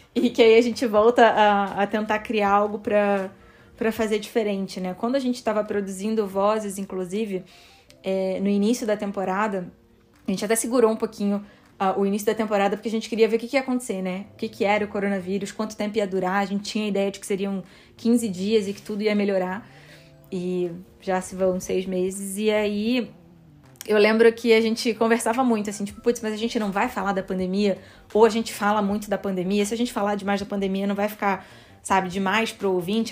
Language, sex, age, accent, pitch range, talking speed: Portuguese, female, 20-39, Brazilian, 200-230 Hz, 215 wpm